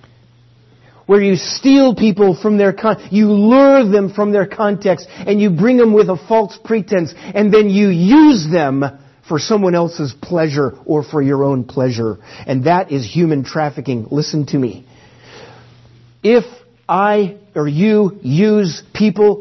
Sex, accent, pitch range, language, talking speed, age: male, American, 120-180 Hz, English, 150 wpm, 50-69